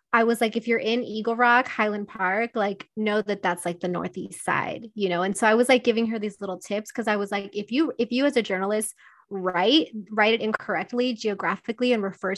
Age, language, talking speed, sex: 20-39, English, 235 wpm, female